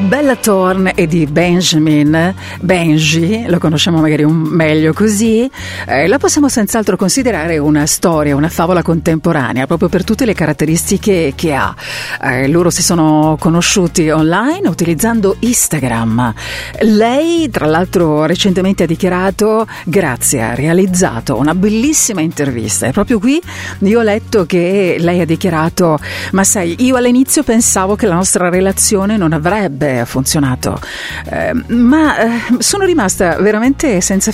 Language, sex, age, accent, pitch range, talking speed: Italian, female, 50-69, native, 160-225 Hz, 135 wpm